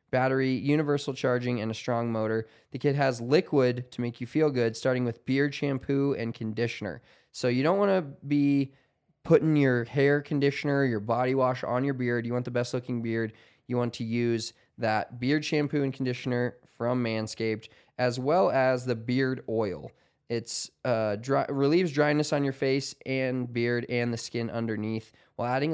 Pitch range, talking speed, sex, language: 115-135 Hz, 180 wpm, male, English